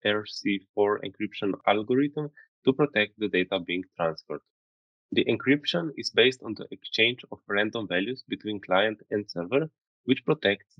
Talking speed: 140 wpm